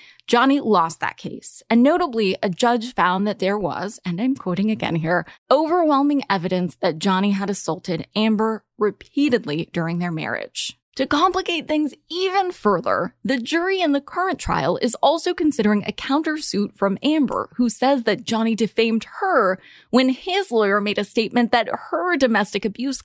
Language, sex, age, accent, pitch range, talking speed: English, female, 20-39, American, 195-260 Hz, 160 wpm